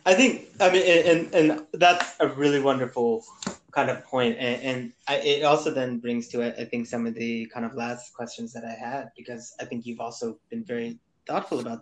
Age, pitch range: 20-39, 120-150 Hz